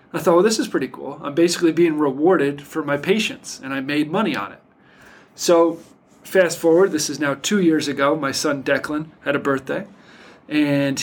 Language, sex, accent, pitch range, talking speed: English, male, American, 140-175 Hz, 195 wpm